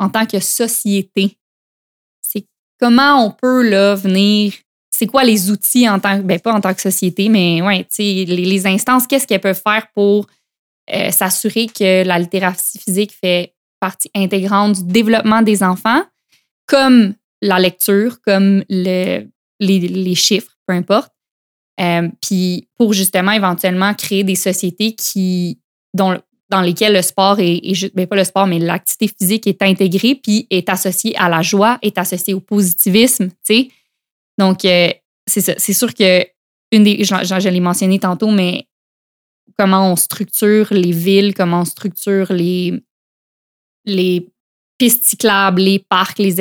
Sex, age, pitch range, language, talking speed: female, 20-39, 185-210 Hz, French, 150 wpm